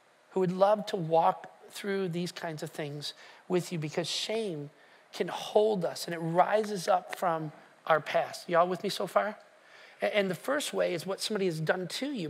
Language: English